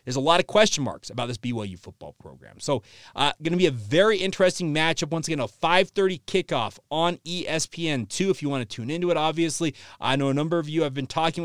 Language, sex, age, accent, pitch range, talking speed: English, male, 30-49, American, 135-175 Hz, 225 wpm